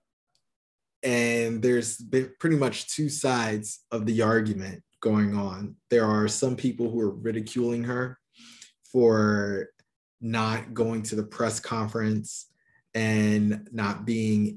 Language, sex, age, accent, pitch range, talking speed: English, male, 20-39, American, 105-120 Hz, 120 wpm